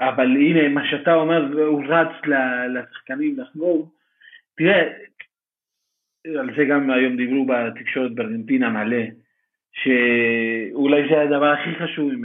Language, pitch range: Hebrew, 140-215 Hz